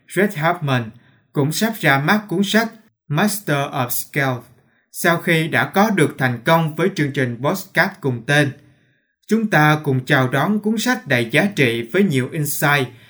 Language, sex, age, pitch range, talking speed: Vietnamese, male, 20-39, 130-175 Hz, 170 wpm